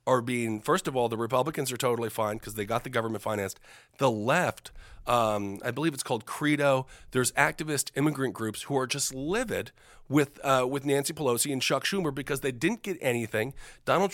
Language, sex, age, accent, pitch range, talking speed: English, male, 40-59, American, 125-160 Hz, 195 wpm